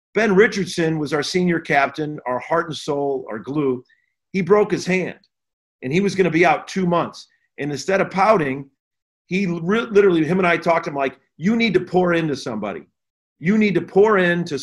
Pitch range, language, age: 150-185 Hz, English, 40-59